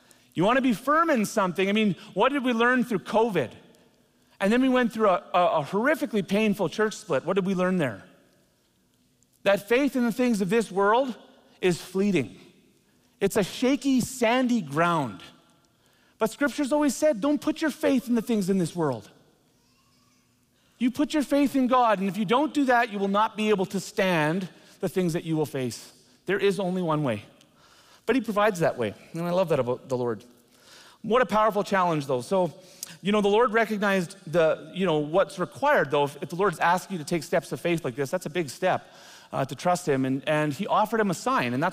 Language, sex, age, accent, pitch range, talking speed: English, male, 40-59, American, 165-225 Hz, 215 wpm